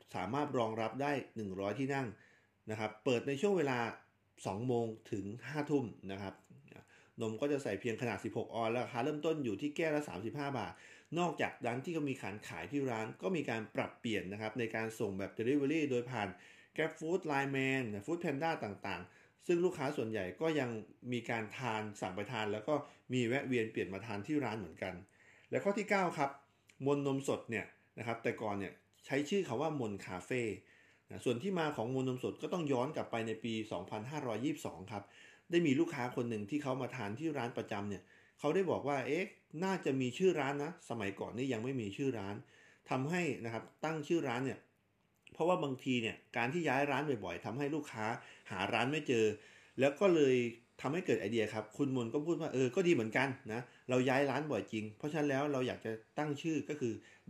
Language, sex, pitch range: Thai, male, 110-145 Hz